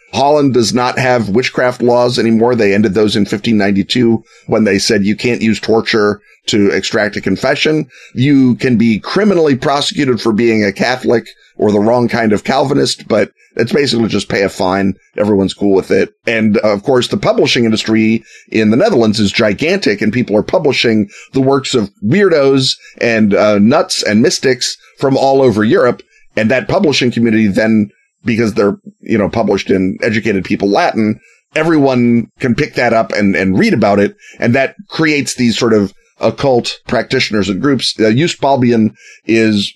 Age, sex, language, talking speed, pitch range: 30-49, male, English, 175 wpm, 105-130 Hz